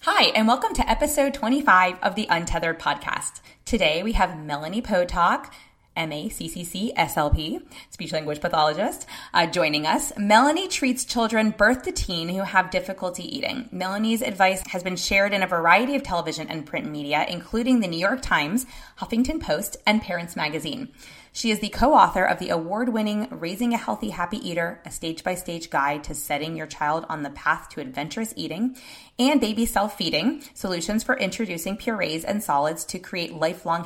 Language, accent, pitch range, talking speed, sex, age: English, American, 165-225 Hz, 165 wpm, female, 20-39